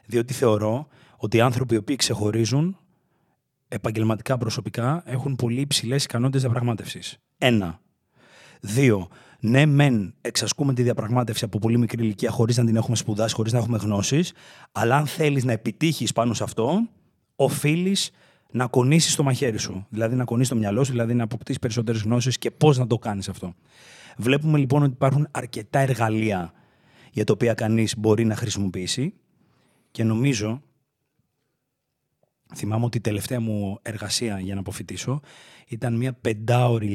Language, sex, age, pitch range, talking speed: Greek, male, 30-49, 115-135 Hz, 150 wpm